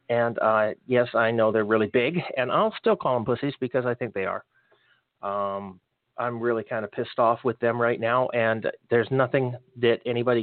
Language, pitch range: English, 120-140 Hz